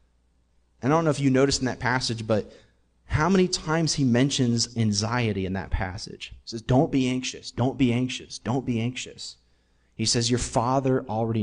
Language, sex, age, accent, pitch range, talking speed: English, male, 30-49, American, 95-130 Hz, 185 wpm